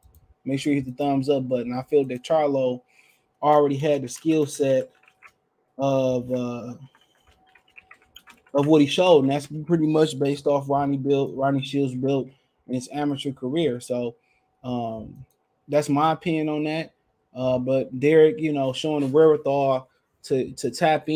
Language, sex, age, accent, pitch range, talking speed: English, male, 20-39, American, 130-160 Hz, 160 wpm